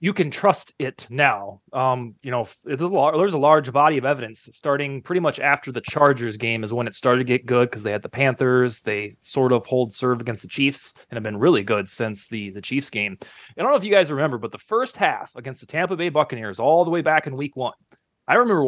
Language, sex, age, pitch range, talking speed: English, male, 30-49, 125-160 Hz, 245 wpm